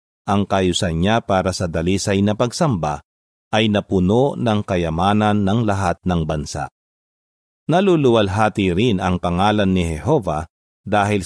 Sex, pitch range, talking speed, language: male, 85-110 Hz, 125 wpm, Filipino